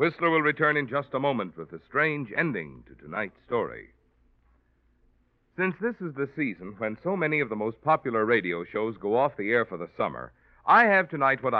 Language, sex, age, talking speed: English, male, 60-79, 200 wpm